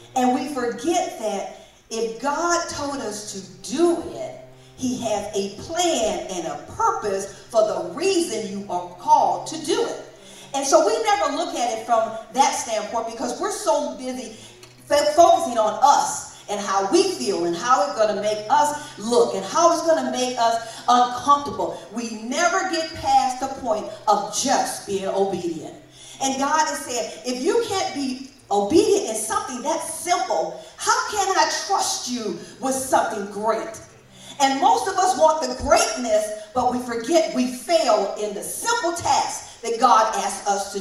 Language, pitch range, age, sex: English, 225-335 Hz, 40-59, female